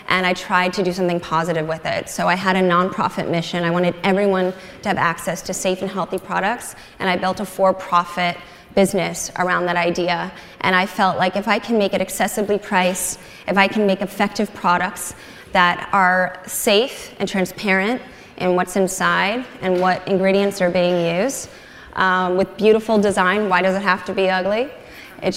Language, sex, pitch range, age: English, female, 180-205 Hz, 20-39